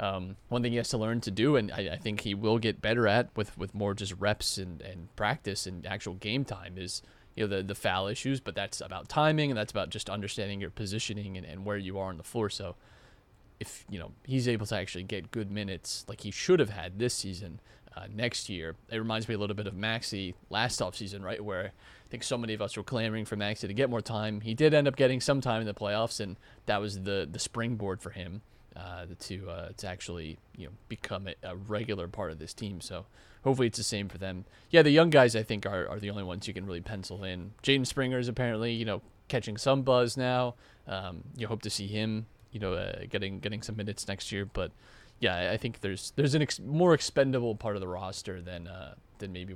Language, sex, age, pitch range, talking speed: English, male, 30-49, 95-115 Hz, 245 wpm